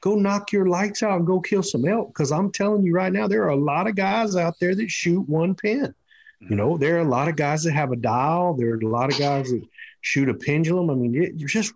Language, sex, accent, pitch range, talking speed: English, male, American, 120-165 Hz, 275 wpm